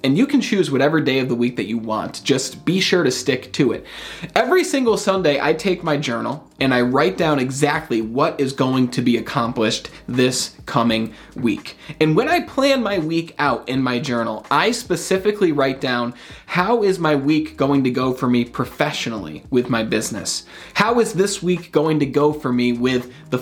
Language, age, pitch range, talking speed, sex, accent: English, 20-39, 125-170 Hz, 200 wpm, male, American